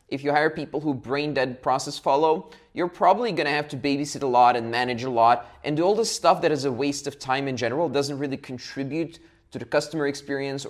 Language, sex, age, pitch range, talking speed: English, male, 20-39, 125-155 Hz, 225 wpm